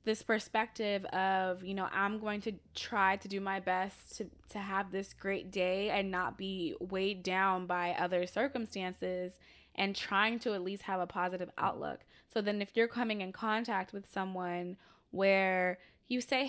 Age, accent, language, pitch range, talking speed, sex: 20-39, American, English, 185-215 Hz, 175 wpm, female